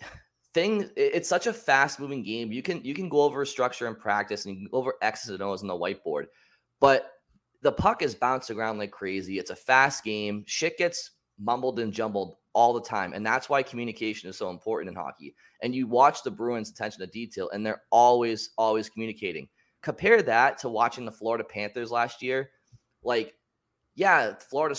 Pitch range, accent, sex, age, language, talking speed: 105-130 Hz, American, male, 20-39, English, 195 wpm